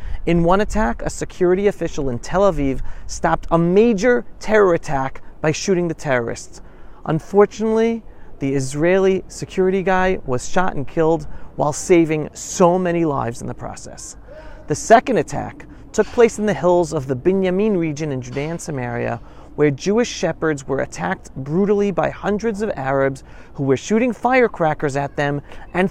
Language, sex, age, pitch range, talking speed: English, male, 30-49, 135-185 Hz, 155 wpm